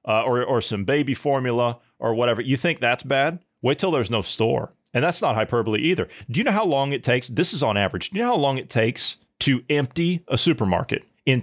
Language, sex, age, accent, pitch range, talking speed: English, male, 30-49, American, 120-175 Hz, 235 wpm